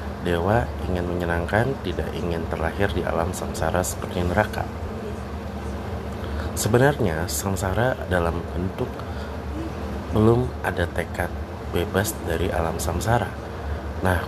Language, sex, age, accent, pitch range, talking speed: Indonesian, male, 30-49, native, 85-100 Hz, 95 wpm